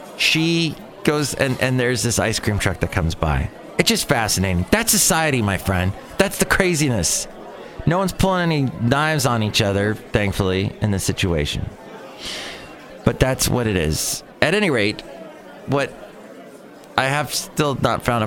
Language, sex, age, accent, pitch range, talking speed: English, male, 30-49, American, 110-160 Hz, 160 wpm